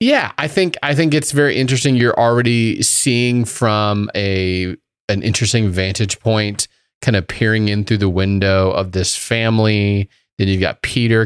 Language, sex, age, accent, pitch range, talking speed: English, male, 30-49, American, 95-115 Hz, 165 wpm